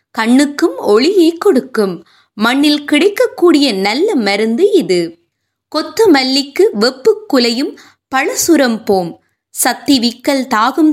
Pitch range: 240-360 Hz